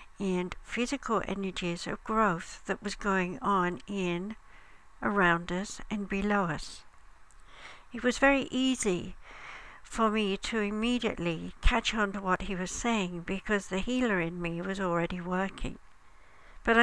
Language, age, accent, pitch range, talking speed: English, 60-79, British, 185-235 Hz, 140 wpm